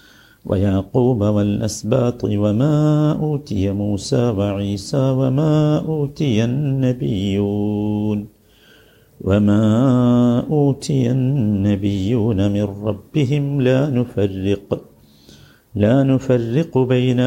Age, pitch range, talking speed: 50-69, 100-125 Hz, 65 wpm